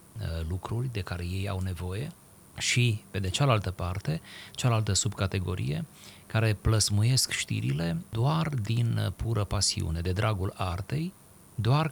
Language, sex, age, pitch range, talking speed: Romanian, male, 30-49, 95-120 Hz, 120 wpm